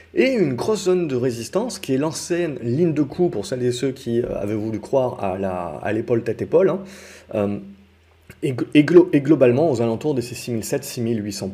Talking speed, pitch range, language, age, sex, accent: 200 wpm, 105-140 Hz, French, 30-49, male, French